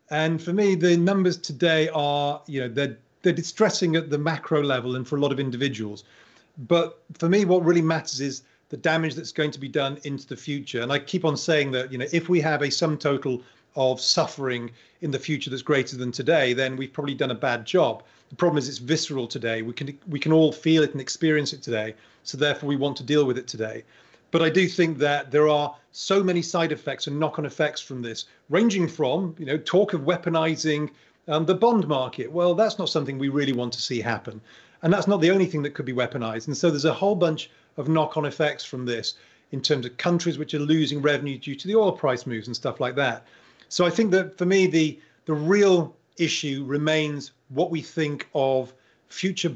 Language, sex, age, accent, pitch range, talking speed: English, male, 40-59, British, 135-165 Hz, 225 wpm